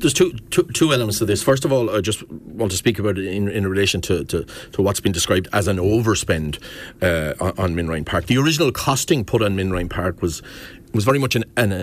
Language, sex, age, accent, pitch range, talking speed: English, male, 40-59, Irish, 105-130 Hz, 240 wpm